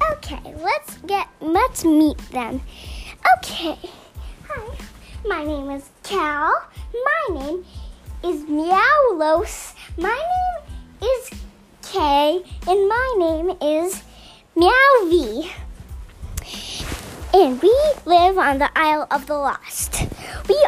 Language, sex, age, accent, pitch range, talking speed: English, male, 40-59, American, 320-415 Hz, 100 wpm